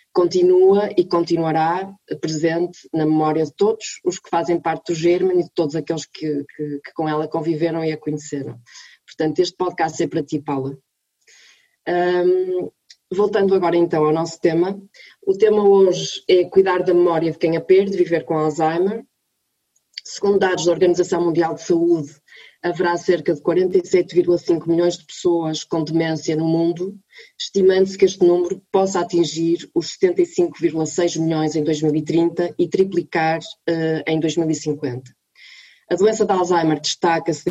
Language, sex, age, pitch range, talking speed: Portuguese, female, 20-39, 160-180 Hz, 145 wpm